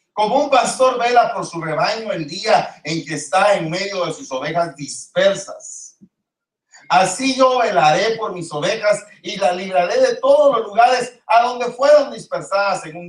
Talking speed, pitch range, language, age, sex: 170 wpm, 170-240 Hz, Spanish, 40-59, male